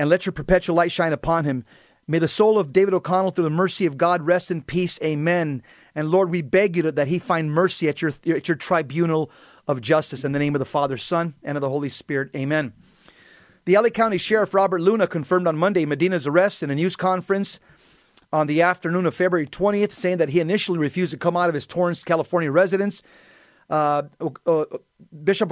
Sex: male